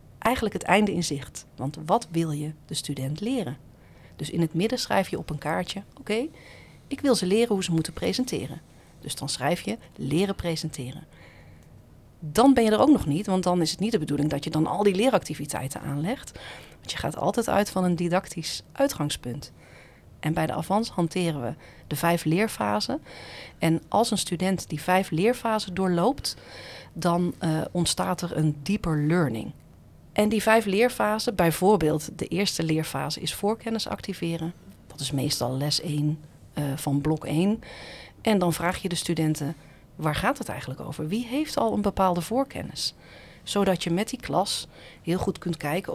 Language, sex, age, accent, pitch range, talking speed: Dutch, female, 40-59, Dutch, 155-205 Hz, 180 wpm